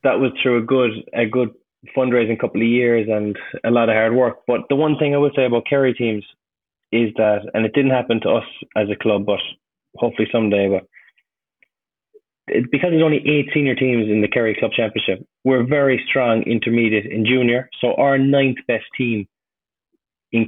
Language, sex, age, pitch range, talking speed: English, male, 20-39, 110-130 Hz, 190 wpm